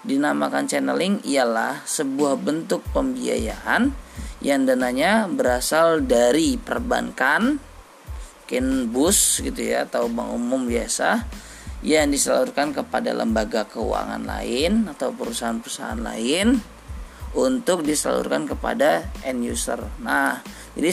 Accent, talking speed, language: native, 100 wpm, Indonesian